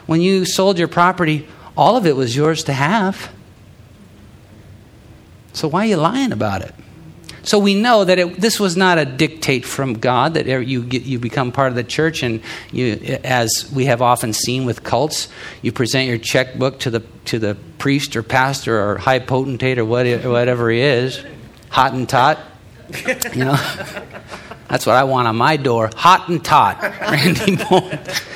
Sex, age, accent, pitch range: male, 50-69, American, 110-150 Hz